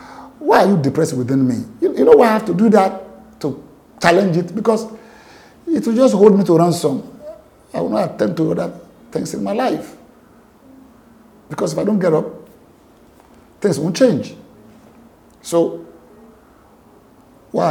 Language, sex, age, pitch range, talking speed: English, male, 50-69, 130-200 Hz, 160 wpm